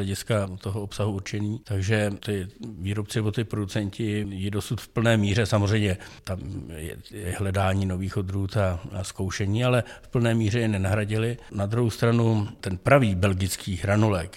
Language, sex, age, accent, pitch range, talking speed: Czech, male, 50-69, native, 95-110 Hz, 160 wpm